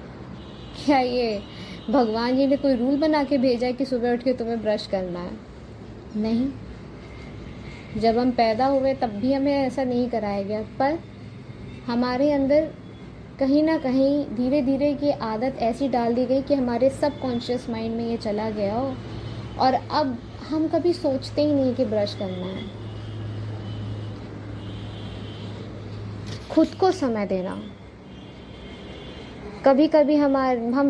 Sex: female